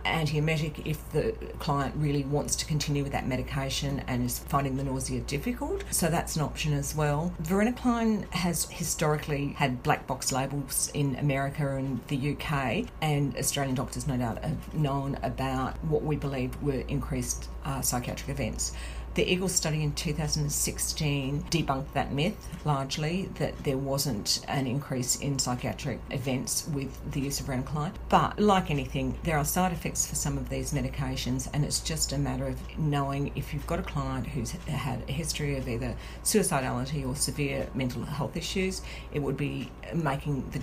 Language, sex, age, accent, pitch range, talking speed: English, female, 40-59, Australian, 130-150 Hz, 165 wpm